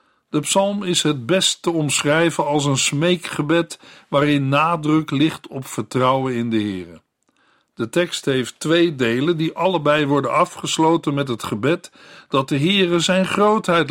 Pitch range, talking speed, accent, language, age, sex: 130-170 Hz, 150 wpm, Dutch, Dutch, 50-69, male